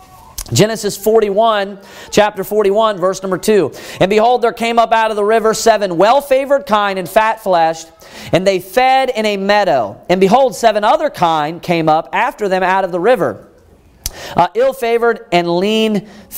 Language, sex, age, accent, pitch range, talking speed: English, male, 40-59, American, 165-220 Hz, 160 wpm